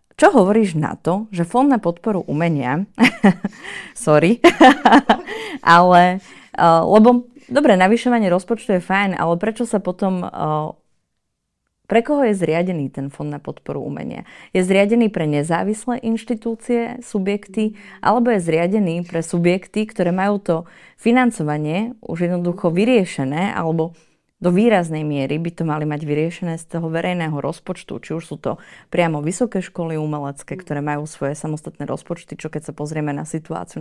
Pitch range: 155-205 Hz